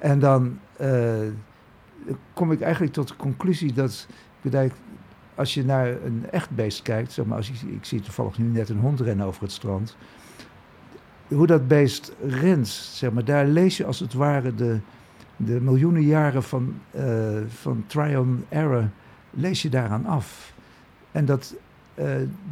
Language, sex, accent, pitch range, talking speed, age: Dutch, male, Dutch, 115-145 Hz, 155 wpm, 60-79